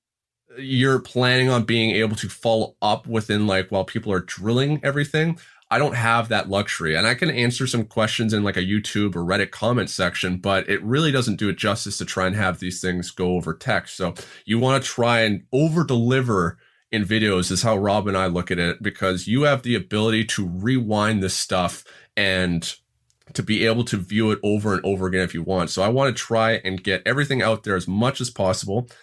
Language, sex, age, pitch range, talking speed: English, male, 30-49, 95-120 Hz, 215 wpm